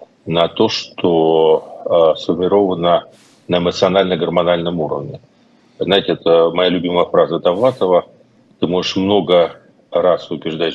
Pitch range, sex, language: 85-125 Hz, male, Russian